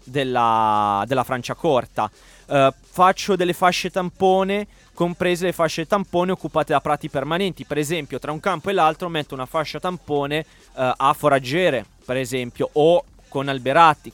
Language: Italian